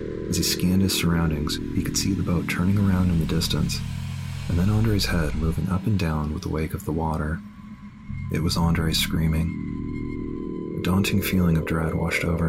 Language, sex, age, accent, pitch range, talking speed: English, male, 30-49, American, 80-95 Hz, 190 wpm